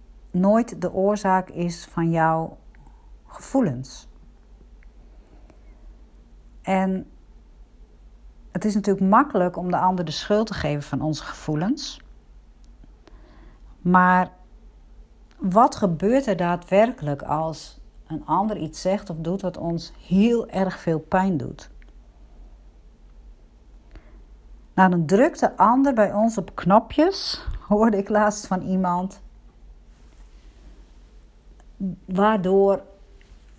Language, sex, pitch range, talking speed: Dutch, female, 165-205 Hz, 100 wpm